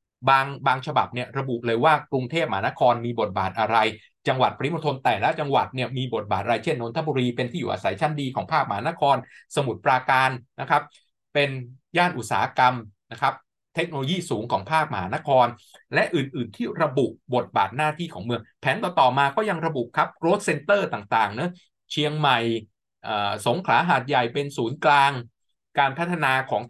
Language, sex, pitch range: Thai, male, 115-150 Hz